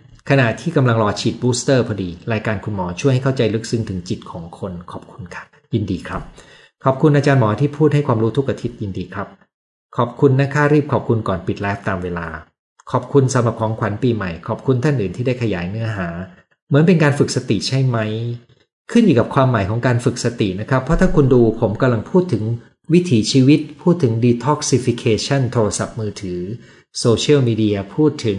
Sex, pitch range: male, 105-140 Hz